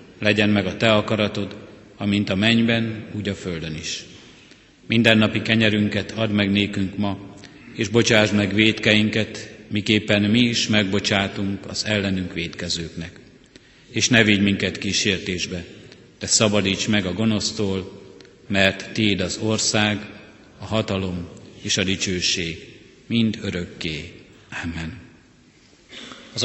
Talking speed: 120 wpm